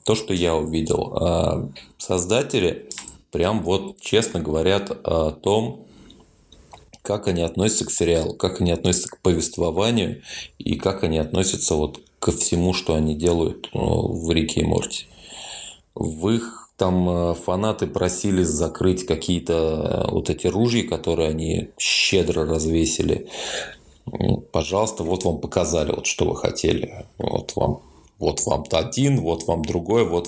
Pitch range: 80-100 Hz